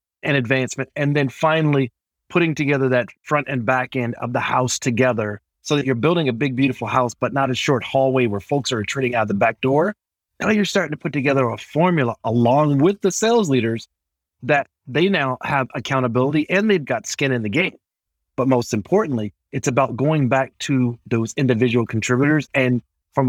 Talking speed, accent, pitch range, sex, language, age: 195 wpm, American, 120-150 Hz, male, English, 30-49